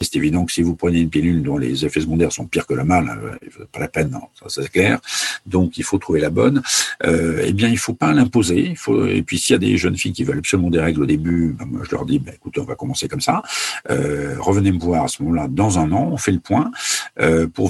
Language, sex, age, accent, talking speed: French, male, 50-69, French, 290 wpm